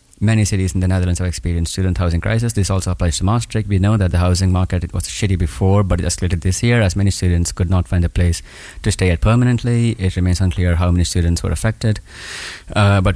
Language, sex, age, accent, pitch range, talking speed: English, male, 30-49, Indian, 90-100 Hz, 235 wpm